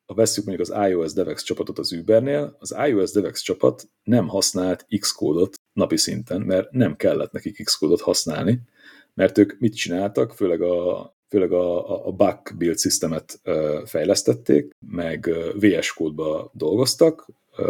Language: Hungarian